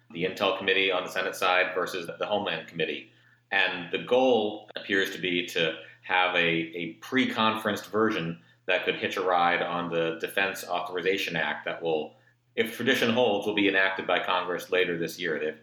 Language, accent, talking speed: English, American, 180 wpm